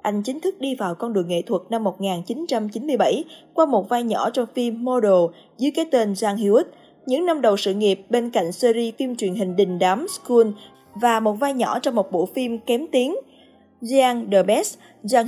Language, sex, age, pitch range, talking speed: Vietnamese, female, 20-39, 205-260 Hz, 200 wpm